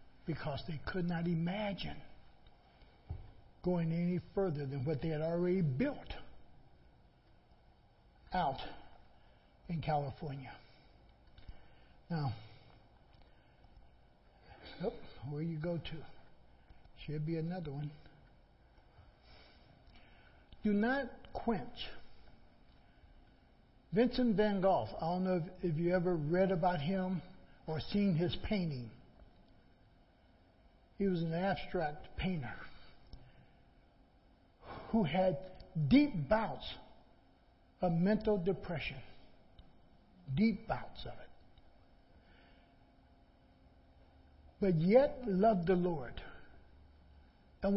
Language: English